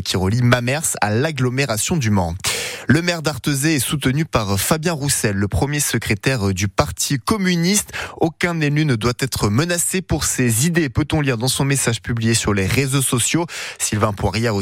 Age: 20-39